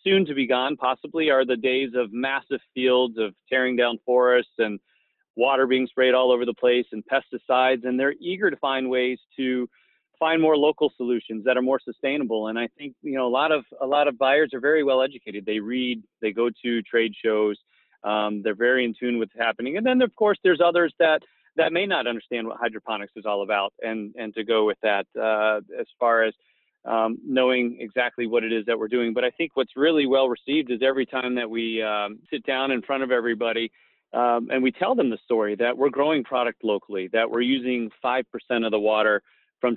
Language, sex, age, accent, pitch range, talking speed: English, male, 30-49, American, 115-130 Hz, 220 wpm